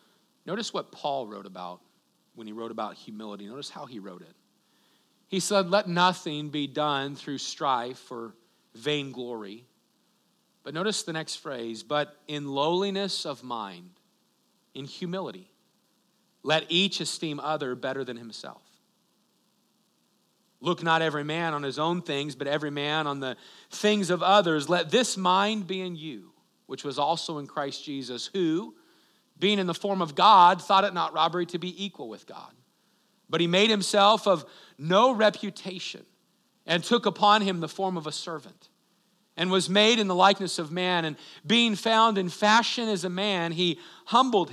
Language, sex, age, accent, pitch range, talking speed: English, male, 40-59, American, 140-195 Hz, 165 wpm